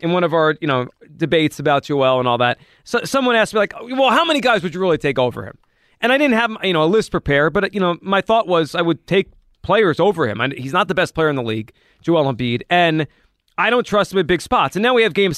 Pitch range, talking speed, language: 150-205 Hz, 280 wpm, English